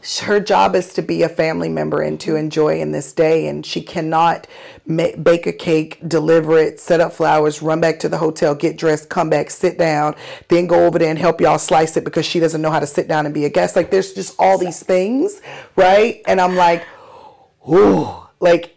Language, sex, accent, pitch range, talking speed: English, female, American, 145-180 Hz, 225 wpm